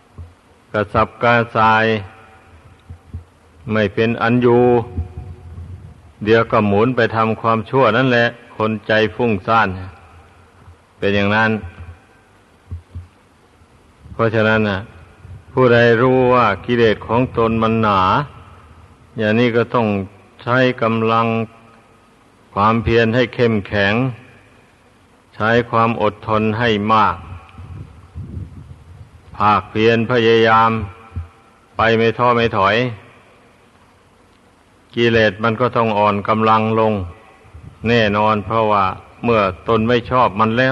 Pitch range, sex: 95-120 Hz, male